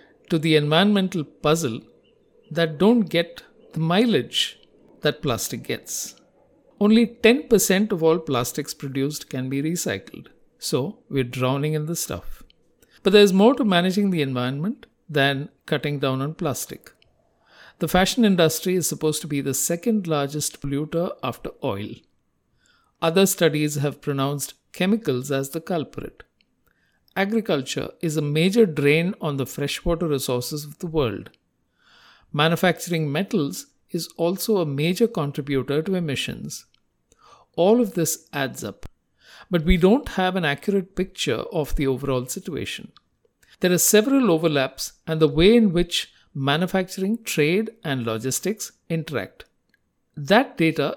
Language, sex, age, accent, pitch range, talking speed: English, male, 50-69, Indian, 145-190 Hz, 135 wpm